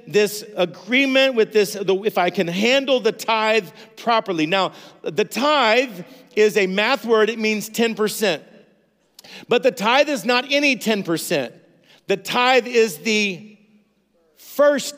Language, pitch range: English, 215-255 Hz